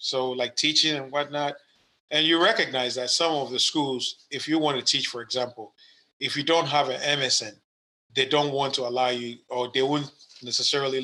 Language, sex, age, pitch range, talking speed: English, male, 30-49, 125-145 Hz, 195 wpm